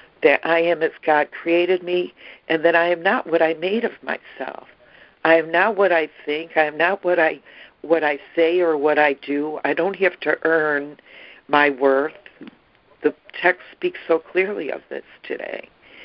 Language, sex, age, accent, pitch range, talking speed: English, female, 60-79, American, 155-185 Hz, 185 wpm